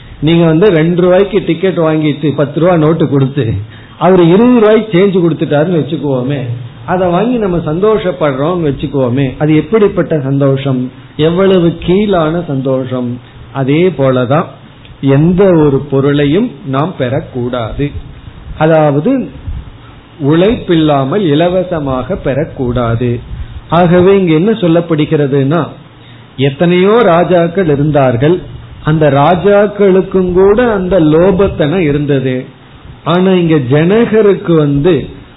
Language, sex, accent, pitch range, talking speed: Tamil, male, native, 135-180 Hz, 80 wpm